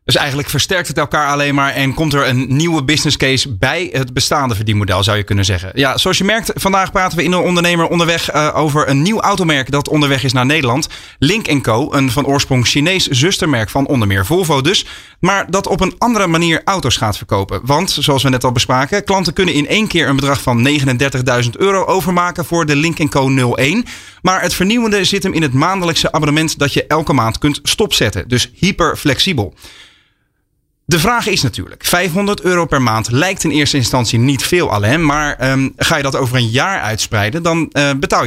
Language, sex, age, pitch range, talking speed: Dutch, male, 30-49, 130-175 Hz, 205 wpm